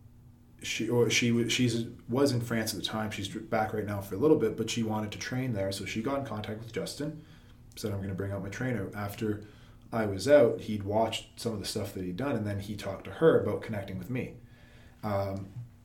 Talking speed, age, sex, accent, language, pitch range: 240 wpm, 20-39, male, American, English, 100-120 Hz